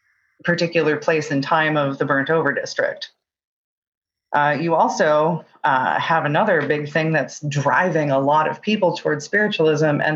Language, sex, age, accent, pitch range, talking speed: English, female, 30-49, American, 145-170 Hz, 155 wpm